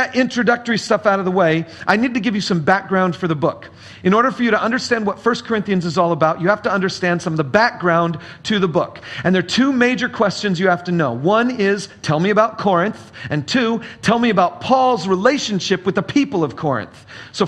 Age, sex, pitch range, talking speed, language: 40-59, male, 175-230 Hz, 235 wpm, English